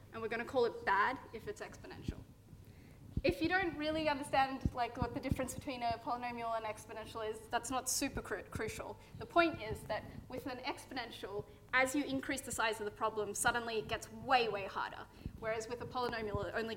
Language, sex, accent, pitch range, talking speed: English, female, Australian, 220-300 Hz, 195 wpm